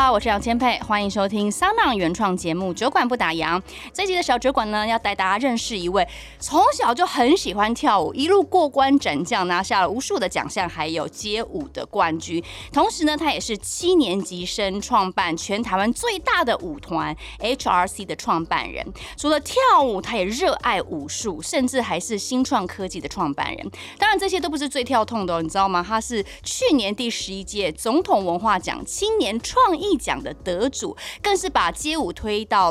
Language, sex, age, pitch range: Chinese, female, 20-39, 205-320 Hz